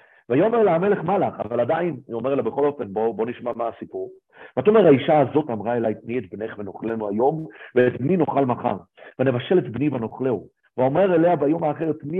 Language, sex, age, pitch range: Hebrew, male, 50-69, 120-165 Hz